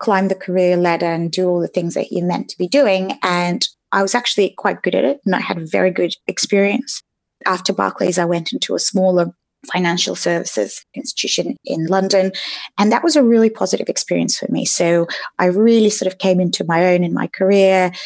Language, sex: English, female